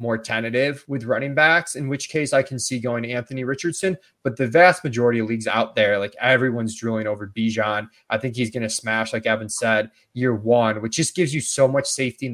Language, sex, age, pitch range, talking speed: English, male, 20-39, 110-135 Hz, 230 wpm